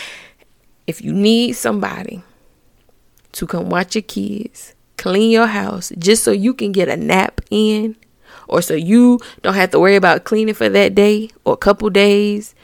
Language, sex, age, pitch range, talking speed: English, female, 20-39, 195-235 Hz, 170 wpm